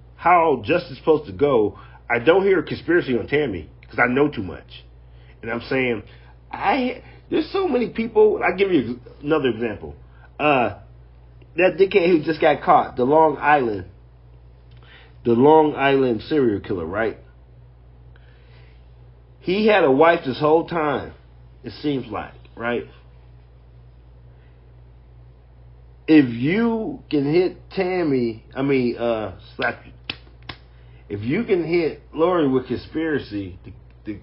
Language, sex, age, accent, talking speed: English, male, 40-59, American, 135 wpm